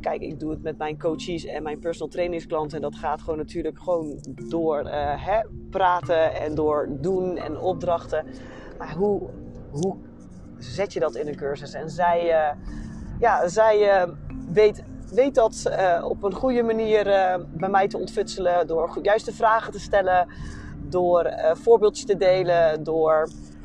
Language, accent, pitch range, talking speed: Dutch, Dutch, 155-200 Hz, 160 wpm